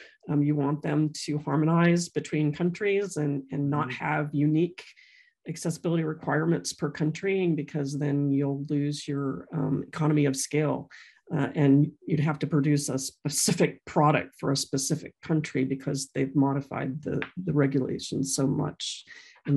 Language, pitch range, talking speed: English, 145-170 Hz, 145 wpm